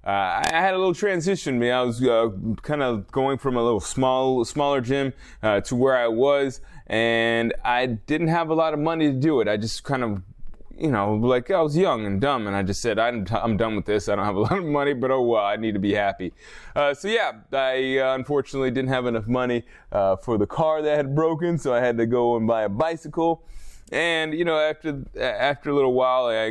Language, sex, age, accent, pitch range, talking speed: English, male, 20-39, American, 100-135 Hz, 245 wpm